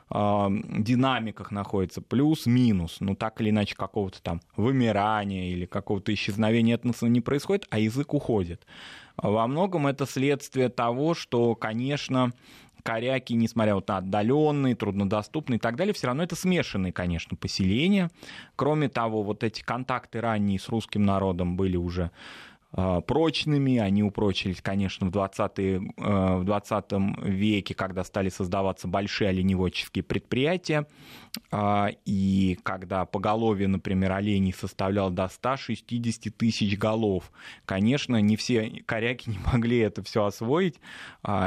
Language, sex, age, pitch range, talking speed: Russian, male, 20-39, 95-120 Hz, 120 wpm